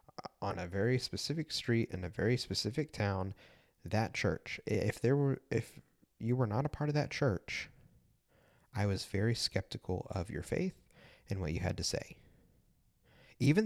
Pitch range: 95-130 Hz